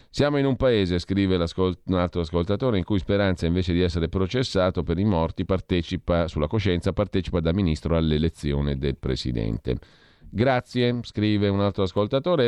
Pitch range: 80-105 Hz